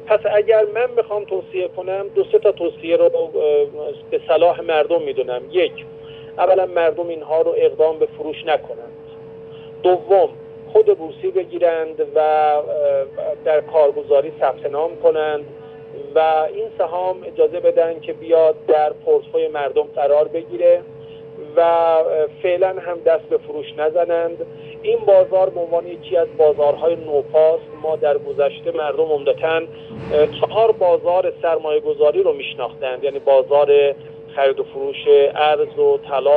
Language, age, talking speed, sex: Persian, 40-59, 135 wpm, male